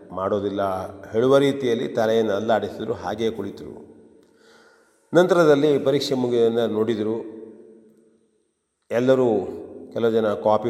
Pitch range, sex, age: 105-140 Hz, male, 40-59